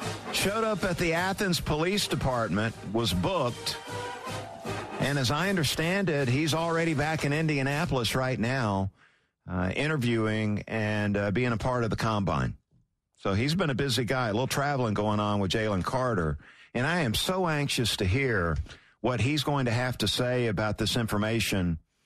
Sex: male